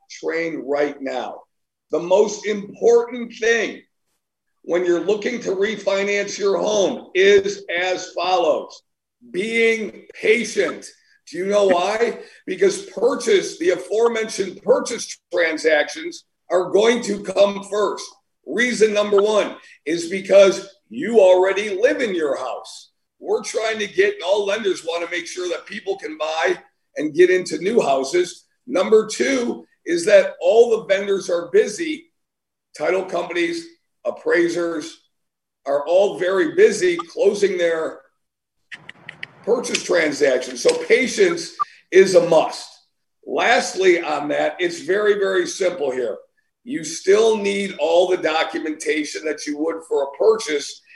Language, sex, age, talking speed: English, male, 50-69, 130 wpm